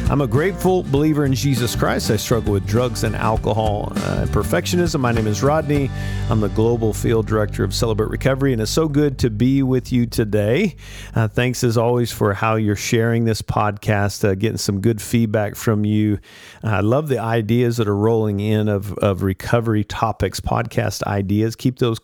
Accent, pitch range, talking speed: American, 100-120 Hz, 190 wpm